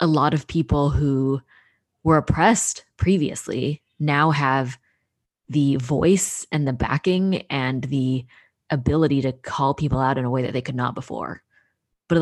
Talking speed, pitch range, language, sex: 150 wpm, 130-160 Hz, English, female